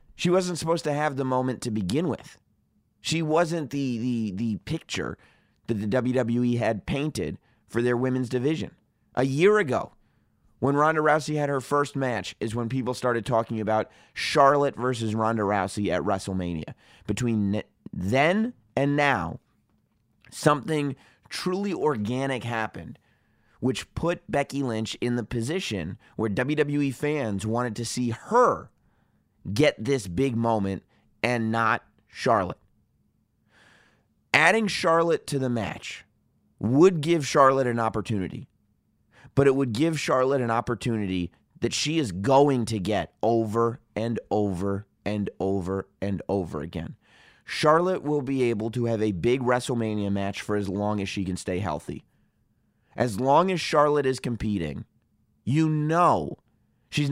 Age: 30-49